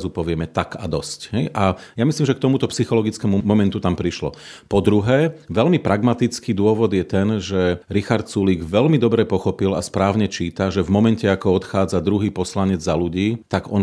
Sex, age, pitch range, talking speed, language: male, 40-59, 95-110 Hz, 180 wpm, Slovak